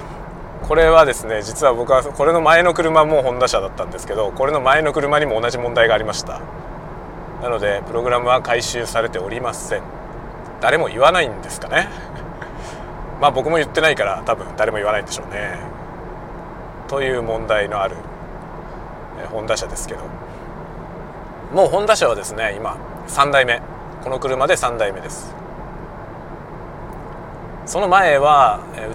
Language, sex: Japanese, male